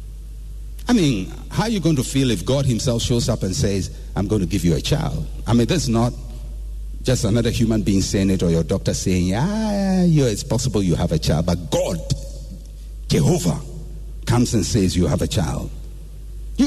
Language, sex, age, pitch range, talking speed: English, male, 60-79, 85-125 Hz, 200 wpm